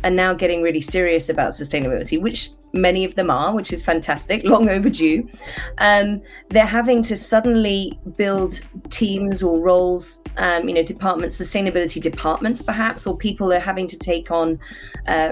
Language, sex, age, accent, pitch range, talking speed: English, female, 30-49, British, 165-205 Hz, 160 wpm